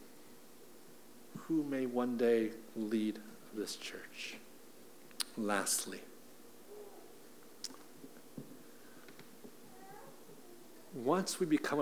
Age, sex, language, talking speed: 50-69, male, English, 55 wpm